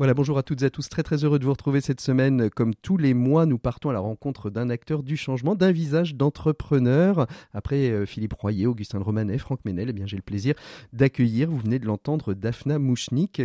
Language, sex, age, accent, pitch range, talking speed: French, male, 40-59, French, 120-150 Hz, 225 wpm